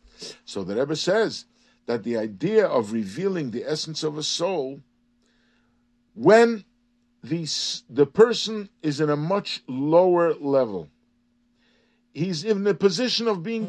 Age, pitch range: 50-69, 140-230 Hz